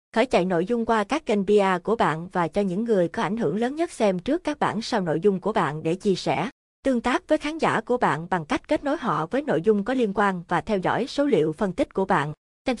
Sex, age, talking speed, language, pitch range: female, 20-39, 275 wpm, Vietnamese, 175-230 Hz